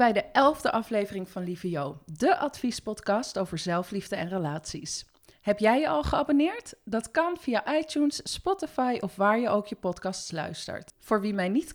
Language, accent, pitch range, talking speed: English, Dutch, 185-250 Hz, 175 wpm